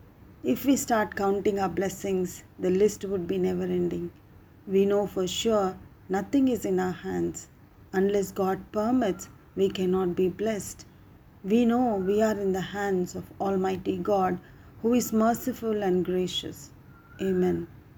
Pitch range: 180-210 Hz